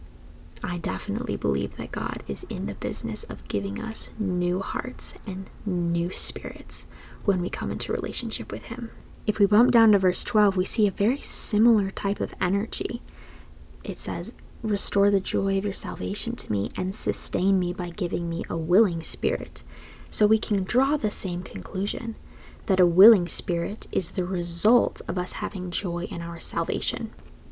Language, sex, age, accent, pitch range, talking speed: English, female, 10-29, American, 170-205 Hz, 170 wpm